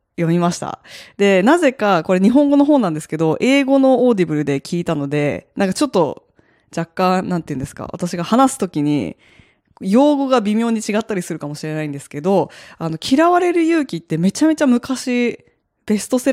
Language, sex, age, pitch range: Japanese, female, 20-39, 160-260 Hz